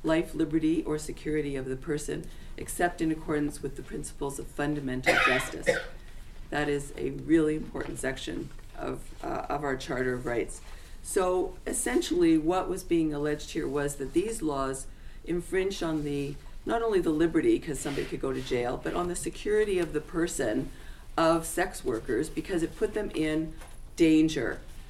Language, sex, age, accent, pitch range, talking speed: English, female, 50-69, American, 135-165 Hz, 165 wpm